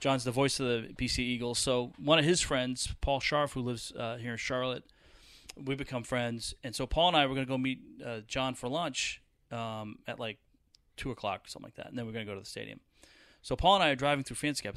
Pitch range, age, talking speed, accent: 115-145 Hz, 30-49, 250 wpm, American